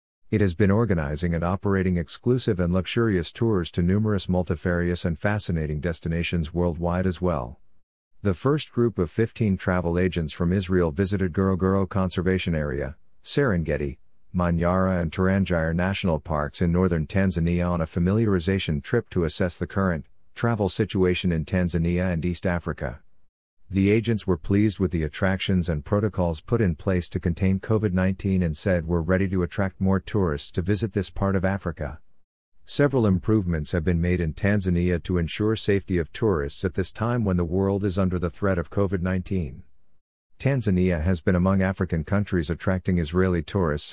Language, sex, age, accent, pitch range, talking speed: English, male, 50-69, American, 85-100 Hz, 165 wpm